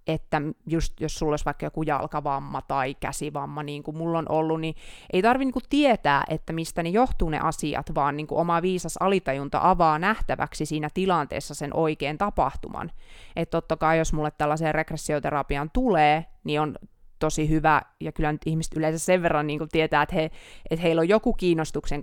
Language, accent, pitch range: Finnish, native, 150-165 Hz